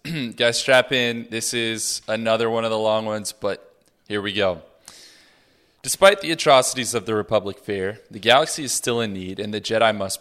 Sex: male